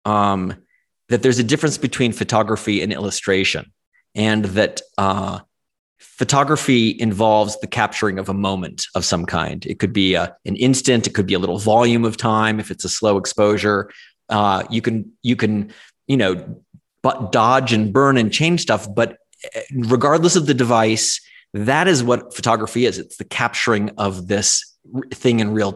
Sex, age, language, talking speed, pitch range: male, 30-49, English, 170 wpm, 105-130 Hz